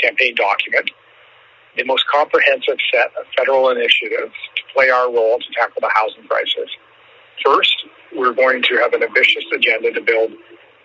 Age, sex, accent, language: 50-69, male, American, English